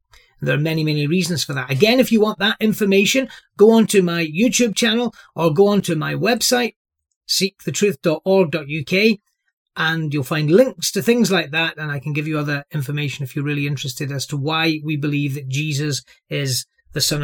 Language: English